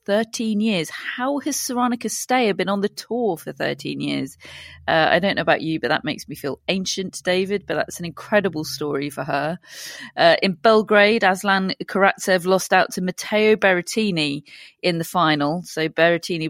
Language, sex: English, female